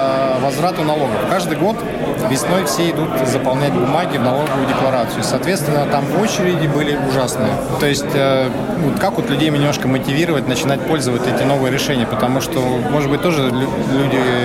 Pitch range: 135-155 Hz